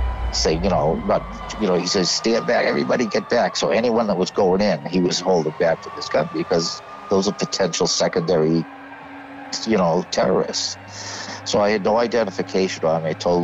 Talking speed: 190 wpm